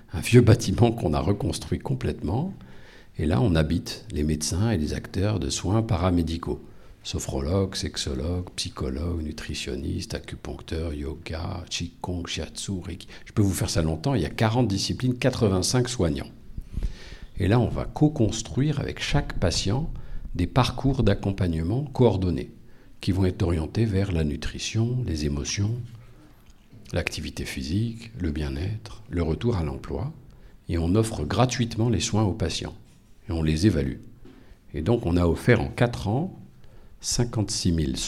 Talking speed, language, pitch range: 145 wpm, French, 85-120 Hz